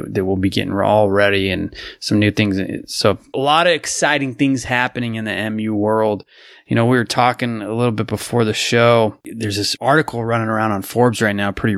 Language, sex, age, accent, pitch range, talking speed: English, male, 20-39, American, 105-120 Hz, 215 wpm